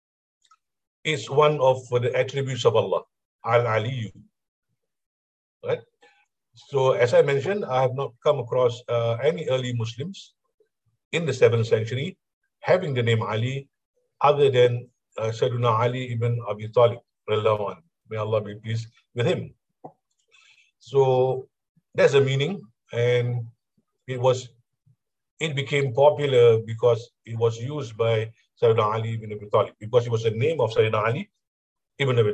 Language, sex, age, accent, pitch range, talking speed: English, male, 50-69, Indian, 115-140 Hz, 135 wpm